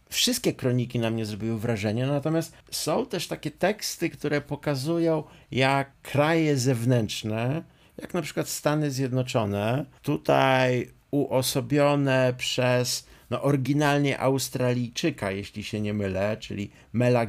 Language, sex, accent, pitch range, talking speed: Polish, male, native, 120-145 Hz, 110 wpm